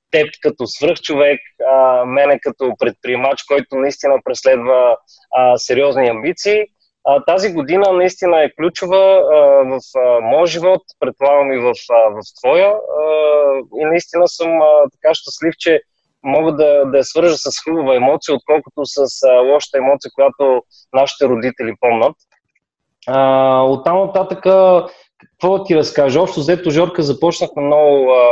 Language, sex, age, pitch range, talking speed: Bulgarian, male, 20-39, 130-160 Hz, 140 wpm